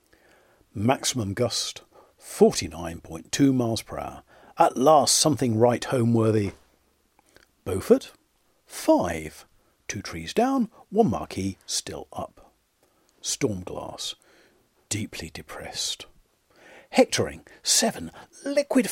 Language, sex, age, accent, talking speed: English, male, 50-69, British, 85 wpm